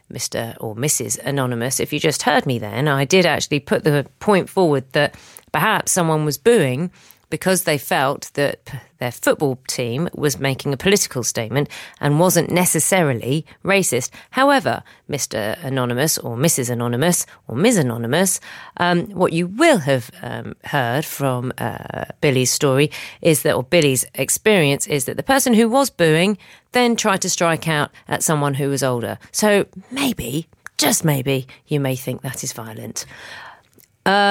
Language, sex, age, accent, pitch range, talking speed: English, female, 40-59, British, 135-180 Hz, 160 wpm